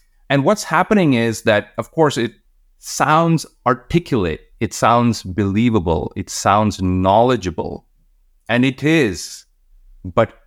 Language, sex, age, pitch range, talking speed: English, male, 30-49, 105-145 Hz, 115 wpm